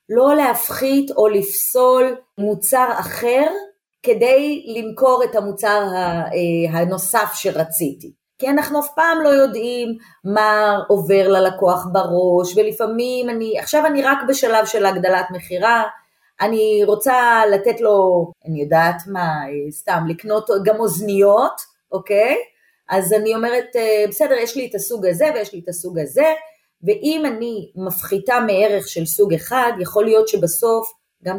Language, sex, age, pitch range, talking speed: Hebrew, female, 30-49, 185-250 Hz, 130 wpm